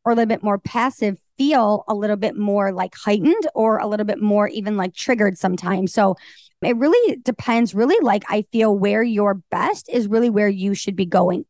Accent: American